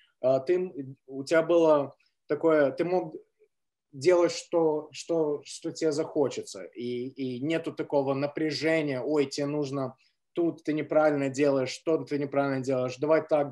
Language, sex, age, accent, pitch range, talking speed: Russian, male, 20-39, native, 135-170 Hz, 140 wpm